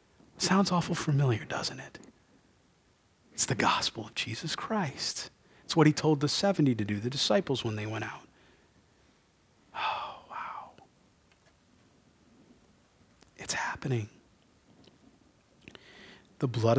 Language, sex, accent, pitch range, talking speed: English, male, American, 120-175 Hz, 110 wpm